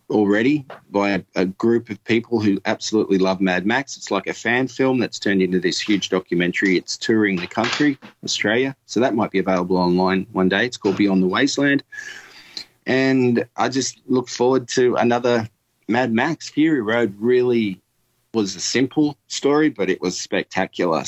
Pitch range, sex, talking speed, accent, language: 95-120 Hz, male, 170 wpm, Australian, English